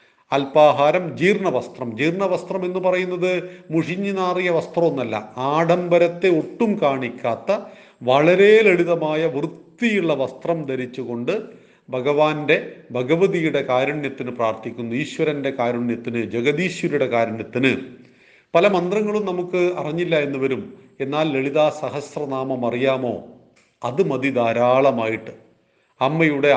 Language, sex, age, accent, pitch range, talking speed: Malayalam, male, 40-59, native, 130-170 Hz, 85 wpm